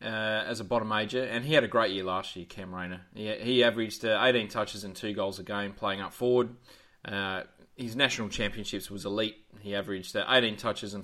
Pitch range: 100-120 Hz